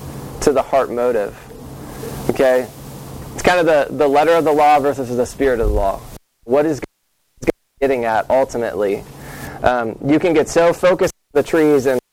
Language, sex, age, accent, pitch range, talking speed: English, male, 20-39, American, 120-150 Hz, 170 wpm